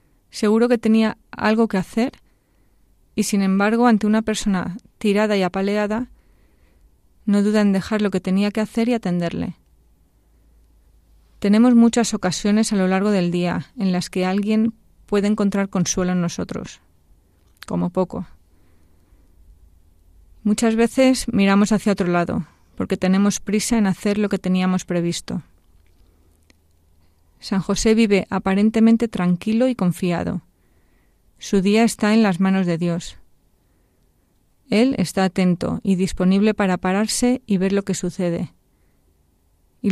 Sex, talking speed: female, 130 wpm